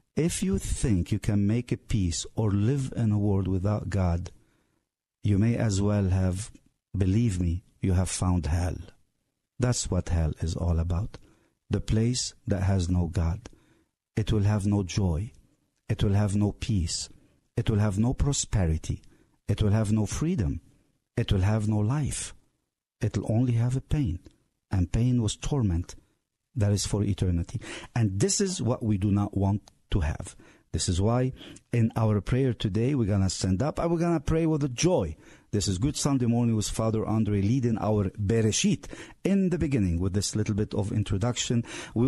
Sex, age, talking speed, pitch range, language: male, 50-69, 180 wpm, 95-120 Hz, English